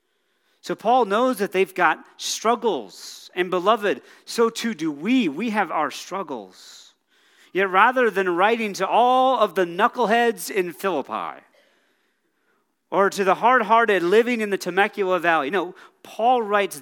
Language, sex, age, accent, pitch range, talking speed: English, male, 40-59, American, 170-230 Hz, 145 wpm